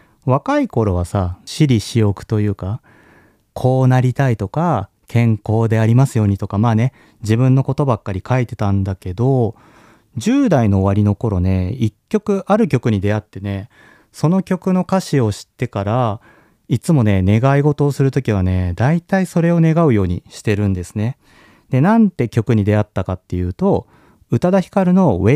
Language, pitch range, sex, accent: Japanese, 100-145 Hz, male, native